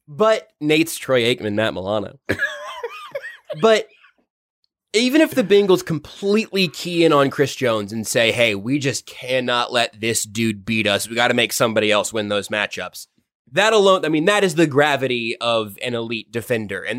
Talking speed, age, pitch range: 175 wpm, 20-39, 120-165 Hz